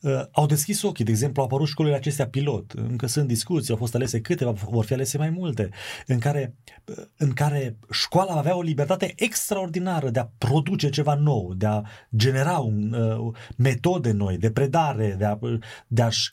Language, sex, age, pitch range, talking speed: Romanian, male, 30-49, 110-140 Hz, 180 wpm